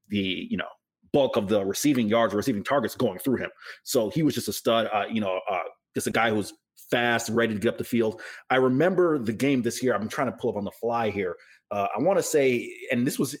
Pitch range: 110-135 Hz